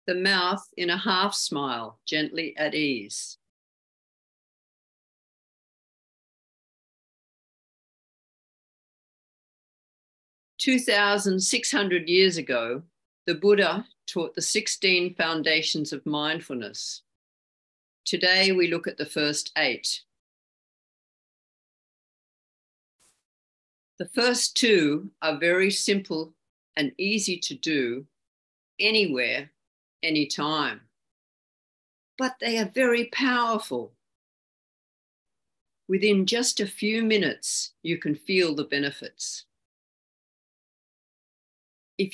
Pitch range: 150-205 Hz